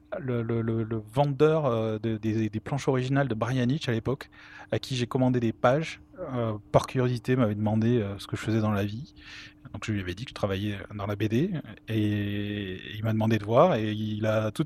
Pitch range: 105-125 Hz